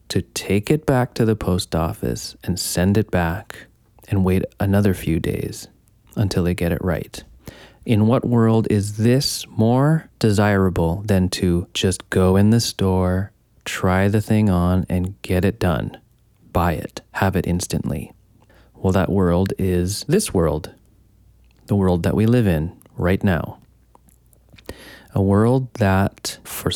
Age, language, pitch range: 30-49, English, 90-110 Hz